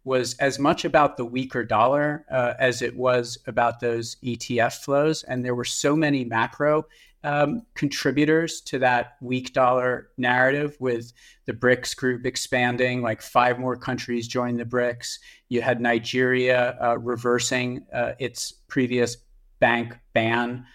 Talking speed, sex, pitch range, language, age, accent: 145 wpm, male, 115-125 Hz, English, 50-69, American